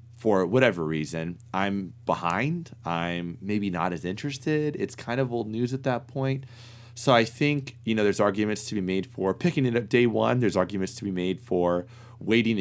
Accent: American